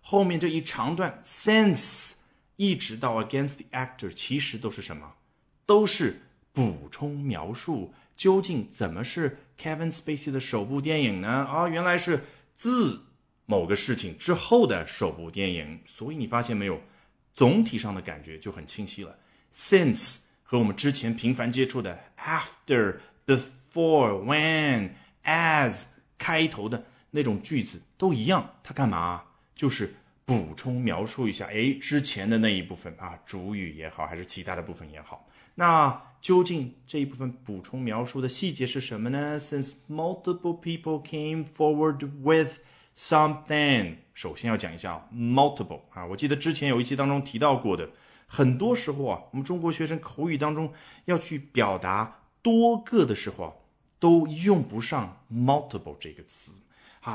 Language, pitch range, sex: Chinese, 110-155 Hz, male